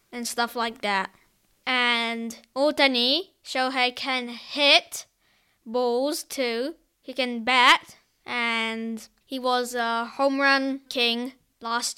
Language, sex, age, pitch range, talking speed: English, female, 20-39, 230-255 Hz, 110 wpm